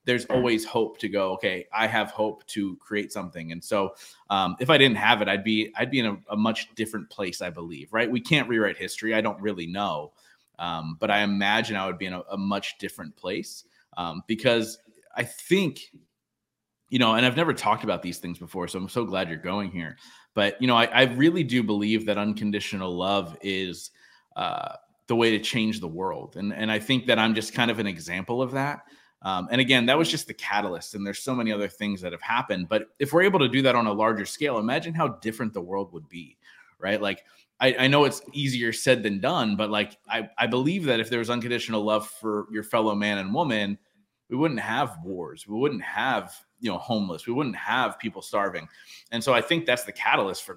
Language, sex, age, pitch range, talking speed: English, male, 30-49, 100-125 Hz, 230 wpm